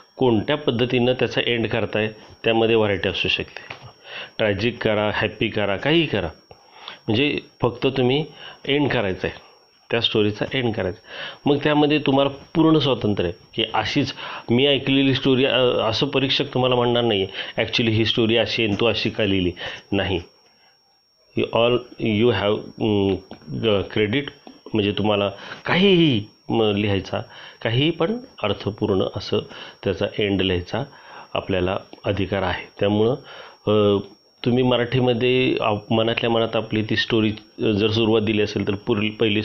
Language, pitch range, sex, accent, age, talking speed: Marathi, 100-125 Hz, male, native, 40-59, 115 wpm